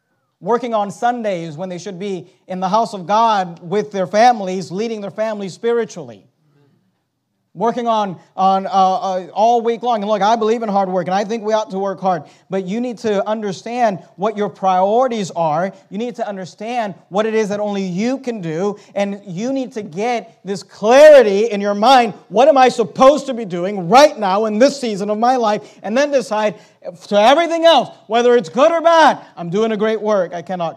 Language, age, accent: English, 40-59, American